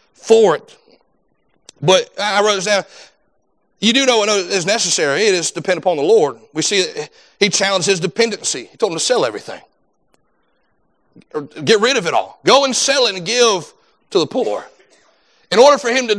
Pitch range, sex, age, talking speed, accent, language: 175-235 Hz, male, 40-59, 195 wpm, American, English